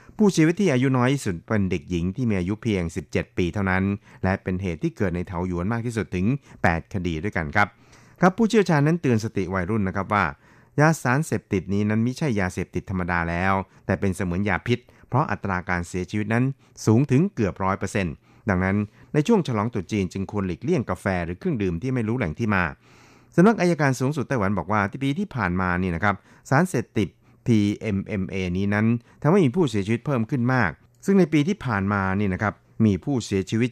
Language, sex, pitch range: Thai, male, 95-120 Hz